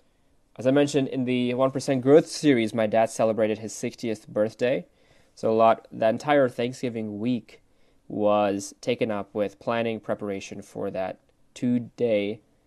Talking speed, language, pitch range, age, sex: 140 wpm, English, 105-130 Hz, 20-39, male